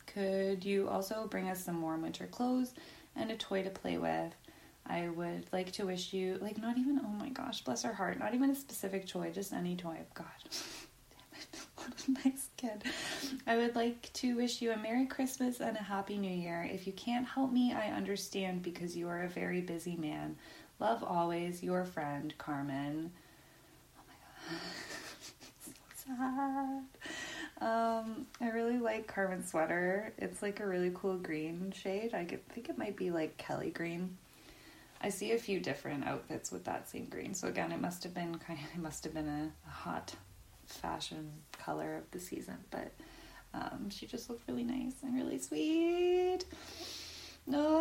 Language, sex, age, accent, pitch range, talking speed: English, female, 20-39, American, 170-260 Hz, 180 wpm